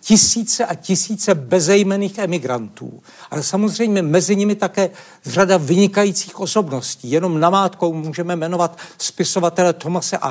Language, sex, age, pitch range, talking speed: Czech, male, 60-79, 170-200 Hz, 115 wpm